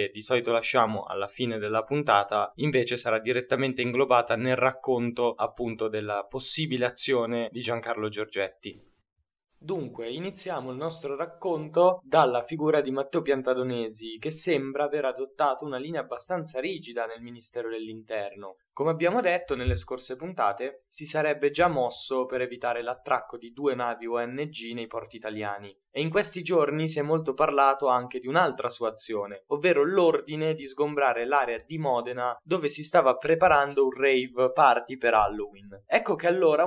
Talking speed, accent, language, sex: 150 wpm, native, Italian, male